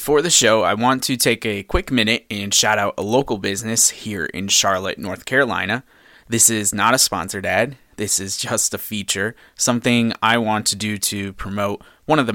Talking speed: 205 wpm